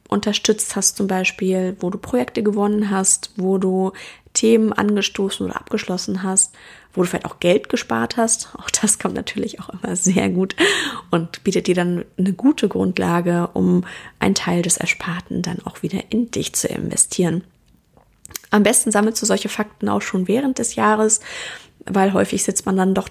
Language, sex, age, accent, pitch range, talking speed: German, female, 20-39, German, 185-215 Hz, 175 wpm